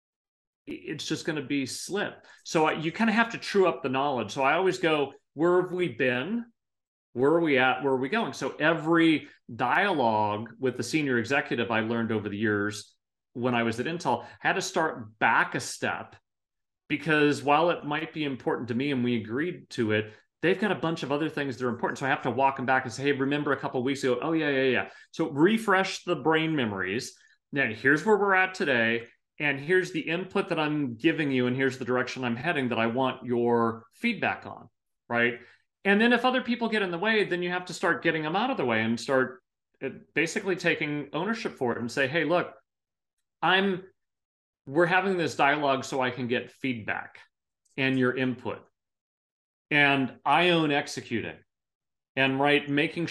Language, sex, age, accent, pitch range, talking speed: English, male, 30-49, American, 125-170 Hz, 205 wpm